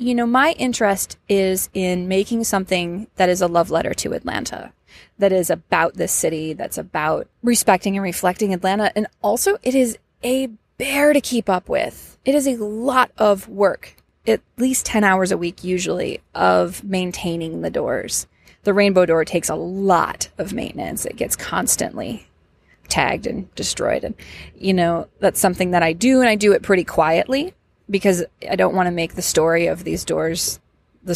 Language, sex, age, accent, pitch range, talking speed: English, female, 20-39, American, 180-245 Hz, 180 wpm